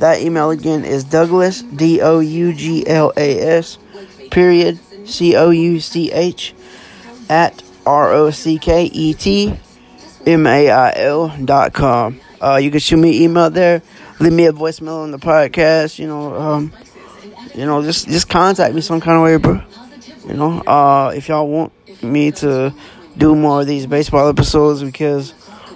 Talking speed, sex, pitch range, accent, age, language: 150 wpm, male, 145-165 Hz, American, 20-39, English